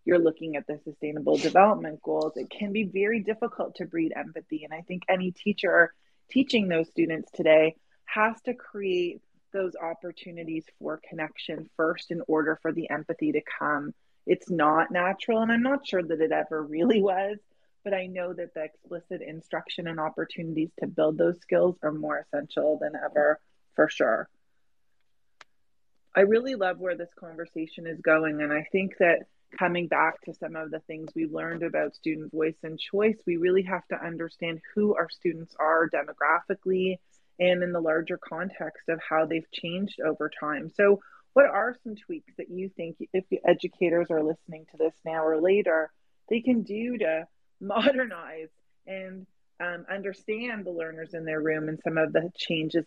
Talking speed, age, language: 175 wpm, 30-49, English